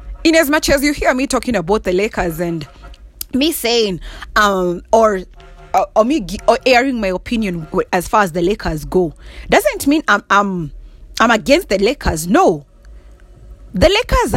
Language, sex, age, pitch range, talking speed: English, female, 30-49, 185-300 Hz, 170 wpm